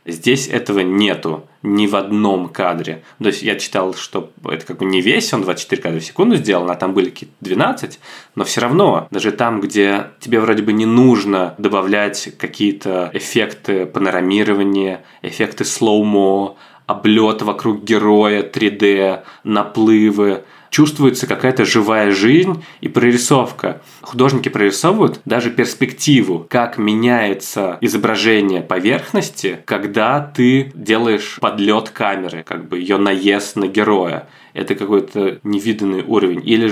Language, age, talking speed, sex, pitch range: Russian, 20-39, 130 wpm, male, 100-115 Hz